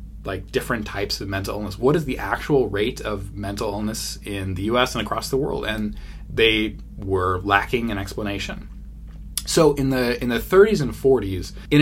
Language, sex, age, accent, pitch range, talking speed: English, male, 20-39, American, 95-125 Hz, 185 wpm